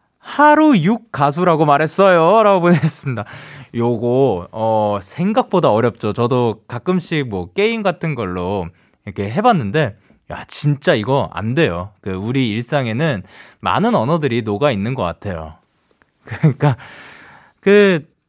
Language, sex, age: Korean, male, 20-39